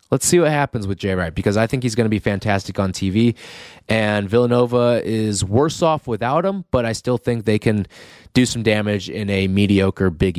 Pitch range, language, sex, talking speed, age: 100-145 Hz, English, male, 215 wpm, 20-39